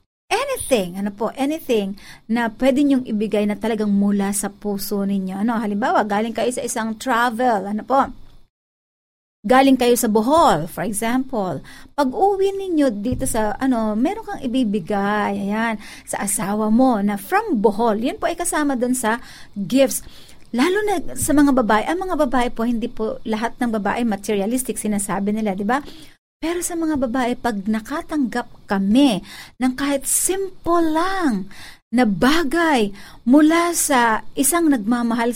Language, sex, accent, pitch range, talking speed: Filipino, female, native, 215-275 Hz, 150 wpm